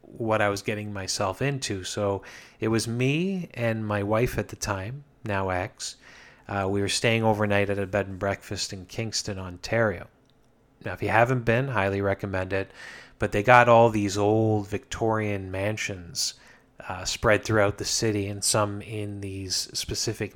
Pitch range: 100-115 Hz